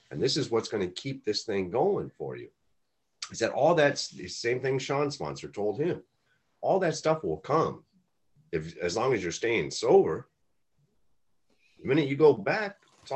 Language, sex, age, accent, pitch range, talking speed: English, male, 40-59, American, 115-175 Hz, 190 wpm